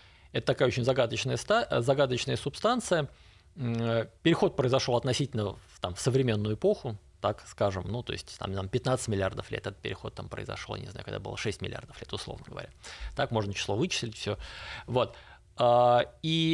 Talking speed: 155 wpm